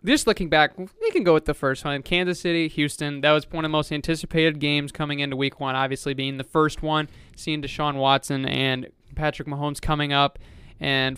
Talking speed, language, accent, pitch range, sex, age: 210 wpm, English, American, 140-165 Hz, male, 20-39